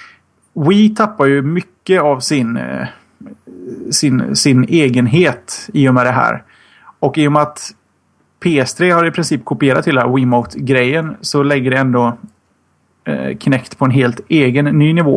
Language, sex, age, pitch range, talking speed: Swedish, male, 30-49, 130-160 Hz, 160 wpm